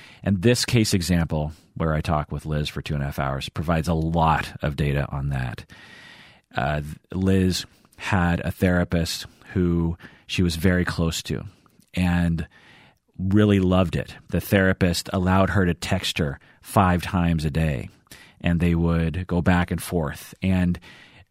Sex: male